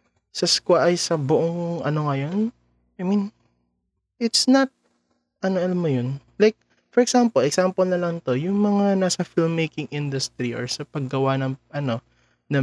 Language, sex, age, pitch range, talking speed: English, male, 20-39, 130-185 Hz, 150 wpm